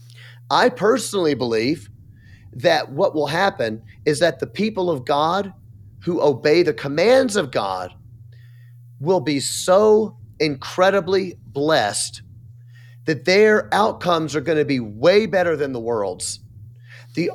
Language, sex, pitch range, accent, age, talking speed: English, male, 115-175 Hz, American, 30-49, 125 wpm